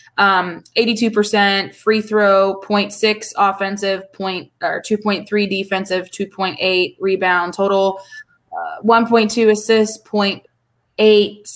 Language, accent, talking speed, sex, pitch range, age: English, American, 85 wpm, female, 190-220 Hz, 20-39